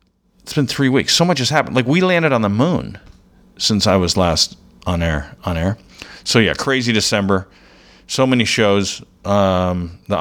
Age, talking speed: 50-69, 180 wpm